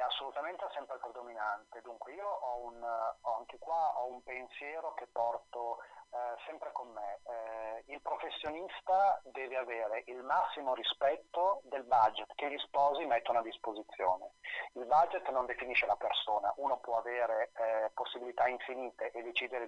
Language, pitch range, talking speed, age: Italian, 115-135 Hz, 150 wpm, 30-49